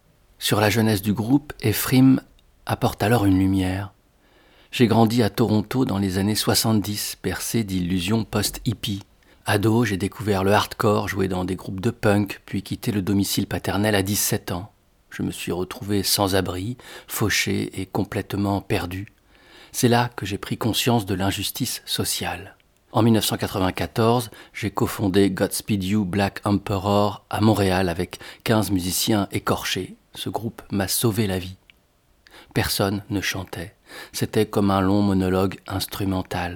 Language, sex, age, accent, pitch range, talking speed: French, male, 50-69, French, 95-110 Hz, 145 wpm